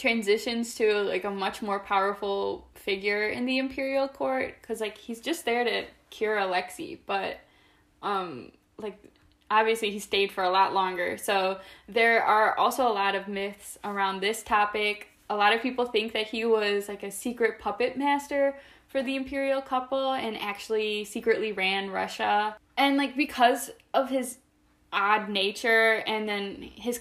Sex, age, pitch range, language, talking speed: female, 10-29, 200-245 Hz, English, 160 wpm